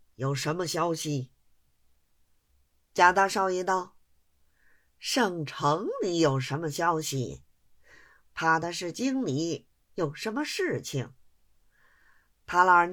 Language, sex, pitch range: Chinese, female, 115-180 Hz